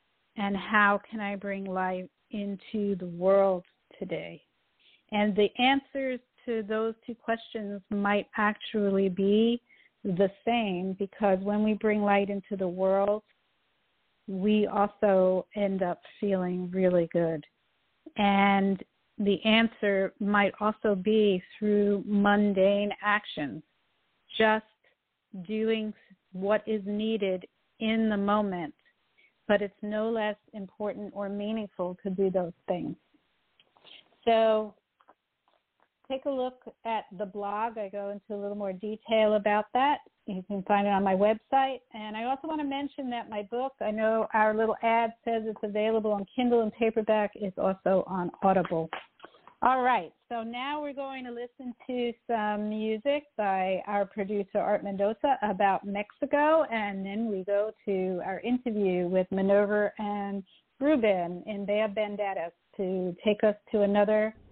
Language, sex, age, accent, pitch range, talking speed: English, female, 50-69, American, 200-225 Hz, 140 wpm